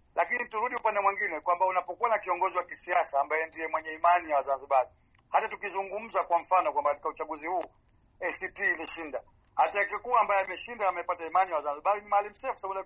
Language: Swahili